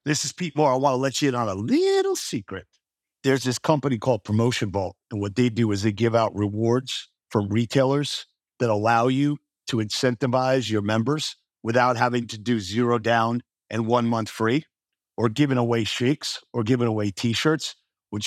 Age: 50-69